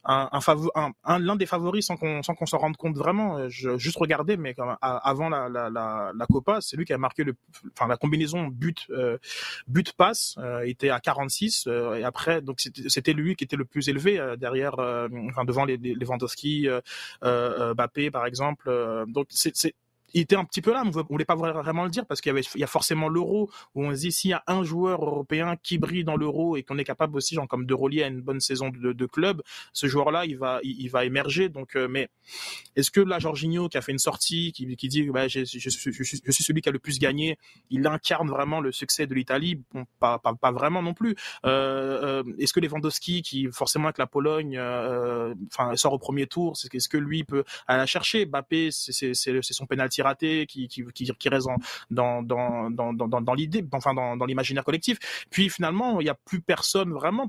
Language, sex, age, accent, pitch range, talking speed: French, male, 20-39, French, 130-165 Hz, 245 wpm